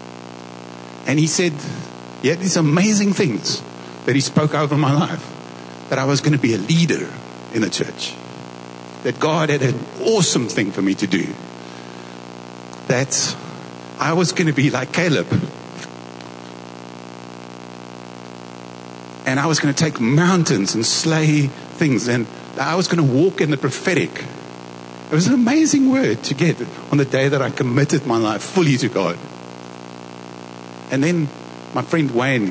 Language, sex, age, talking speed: English, male, 50-69, 155 wpm